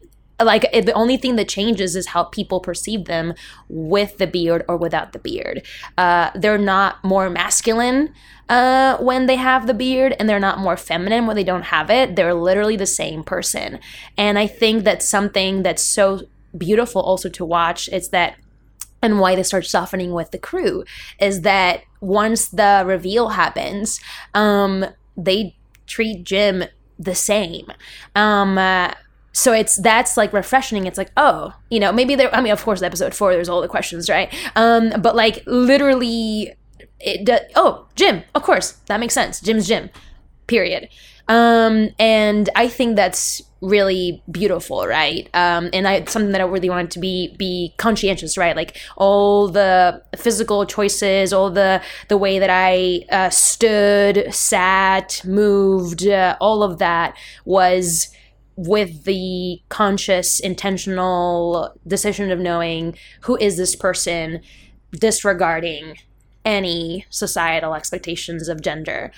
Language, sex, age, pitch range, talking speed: English, female, 10-29, 180-215 Hz, 155 wpm